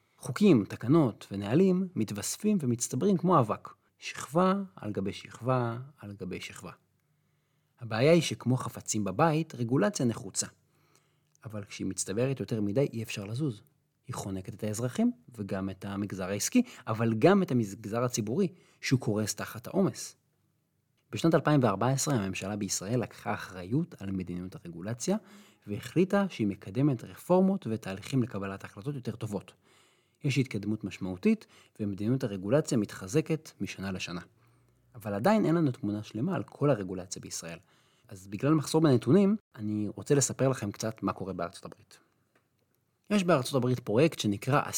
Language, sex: Hebrew, male